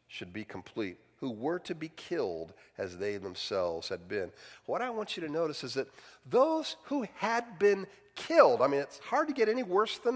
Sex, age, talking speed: male, 50-69, 205 wpm